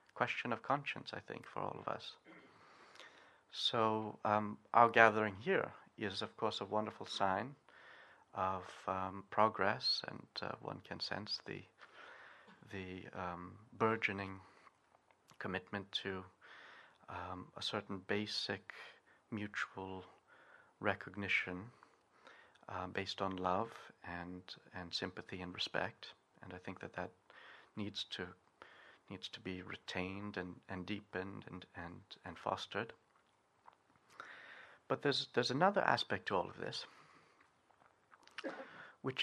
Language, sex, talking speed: English, male, 120 wpm